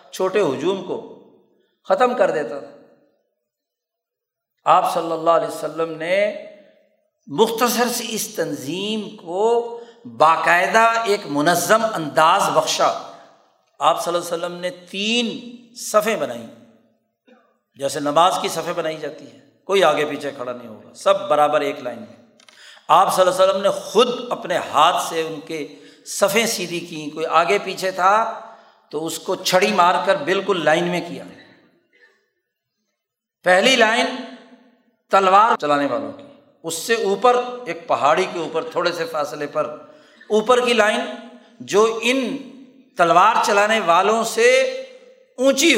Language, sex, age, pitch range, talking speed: Urdu, male, 50-69, 170-245 Hz, 140 wpm